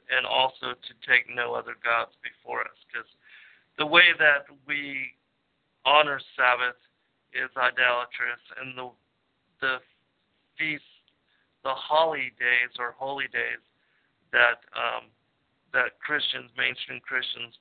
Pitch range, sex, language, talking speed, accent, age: 125-145 Hz, male, English, 115 wpm, American, 50-69